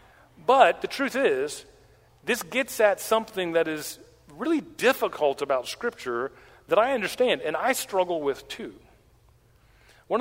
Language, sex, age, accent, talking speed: English, male, 40-59, American, 135 wpm